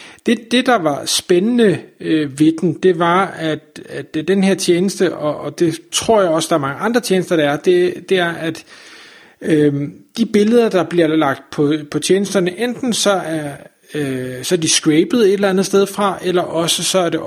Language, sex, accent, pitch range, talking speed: Danish, male, native, 155-190 Hz, 210 wpm